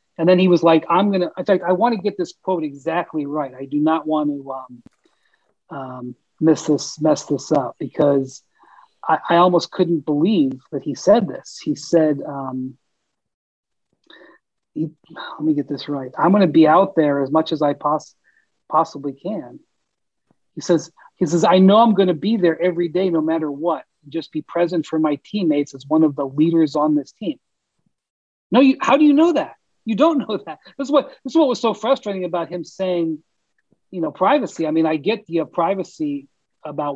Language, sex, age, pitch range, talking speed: English, male, 40-59, 155-200 Hz, 190 wpm